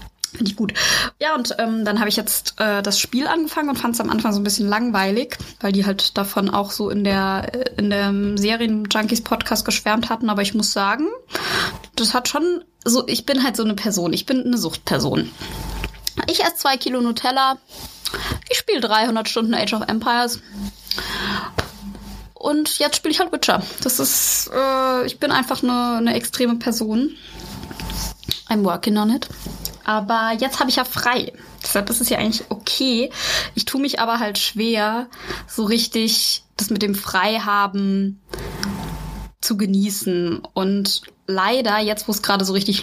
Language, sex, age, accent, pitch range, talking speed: German, female, 20-39, German, 205-250 Hz, 170 wpm